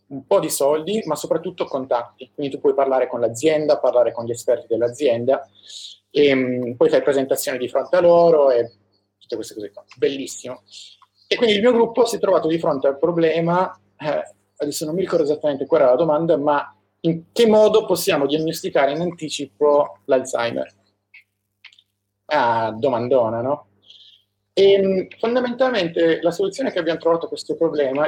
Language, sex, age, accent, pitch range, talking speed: Italian, male, 30-49, native, 125-175 Hz, 160 wpm